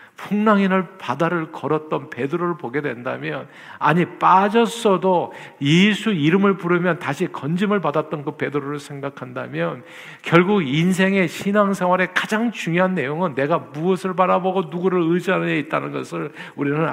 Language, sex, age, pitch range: Korean, male, 50-69, 130-190 Hz